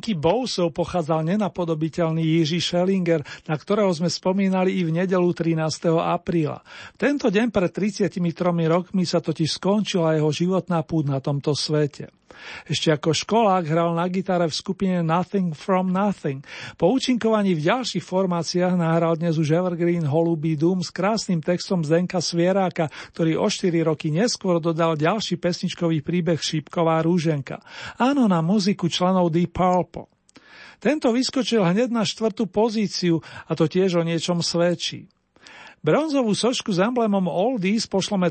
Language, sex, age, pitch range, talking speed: Slovak, male, 40-59, 165-195 Hz, 145 wpm